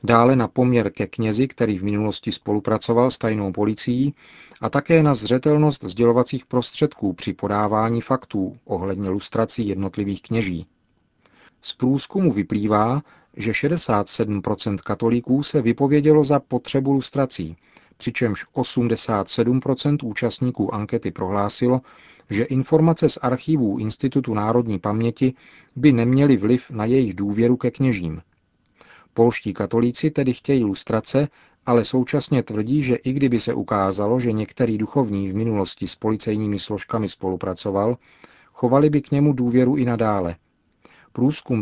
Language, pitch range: Czech, 105-130 Hz